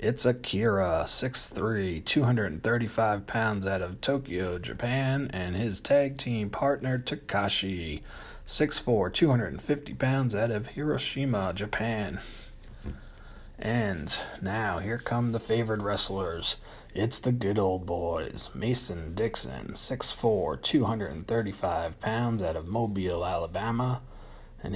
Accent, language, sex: American, English, male